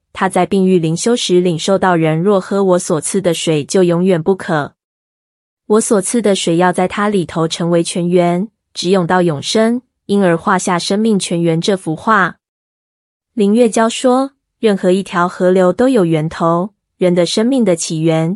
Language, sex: Chinese, female